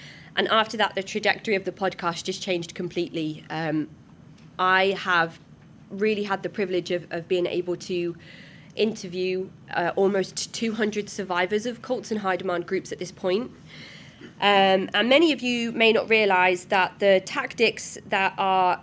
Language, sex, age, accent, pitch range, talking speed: English, female, 20-39, British, 170-200 Hz, 160 wpm